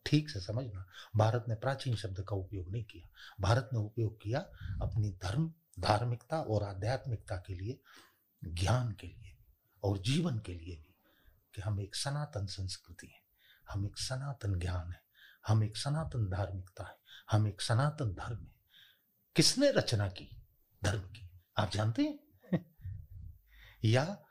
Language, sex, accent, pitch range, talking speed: Hindi, male, native, 100-120 Hz, 130 wpm